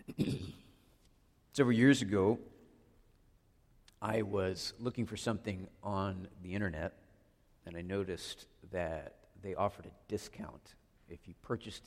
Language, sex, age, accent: English, male, 50-69, American